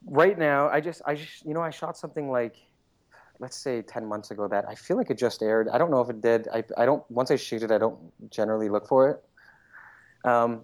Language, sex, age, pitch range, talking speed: English, male, 30-49, 105-125 Hz, 250 wpm